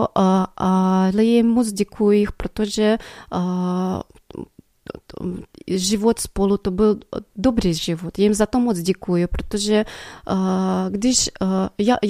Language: Czech